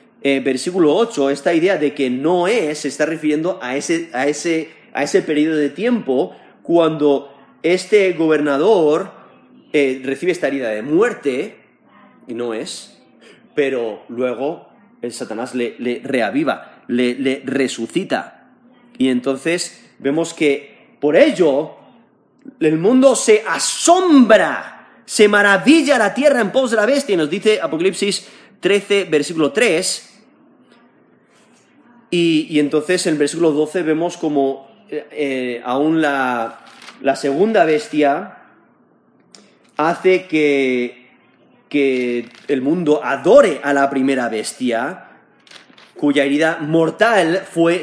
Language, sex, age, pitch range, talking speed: Spanish, male, 30-49, 140-200 Hz, 120 wpm